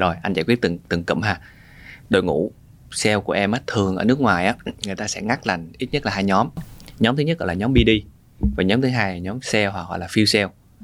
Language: Vietnamese